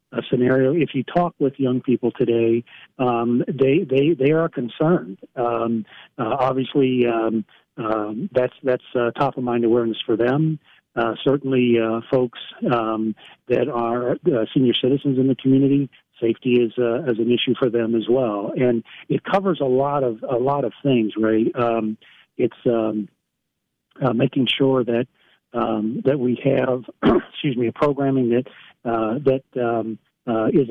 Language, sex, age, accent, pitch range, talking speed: English, male, 40-59, American, 115-135 Hz, 165 wpm